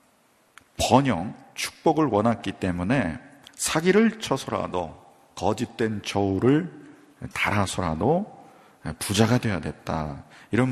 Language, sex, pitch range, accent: Korean, male, 100-140 Hz, native